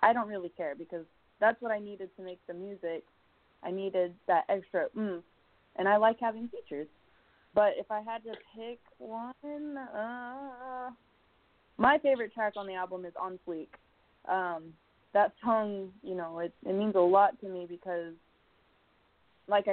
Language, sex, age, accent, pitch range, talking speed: English, female, 20-39, American, 180-215 Hz, 165 wpm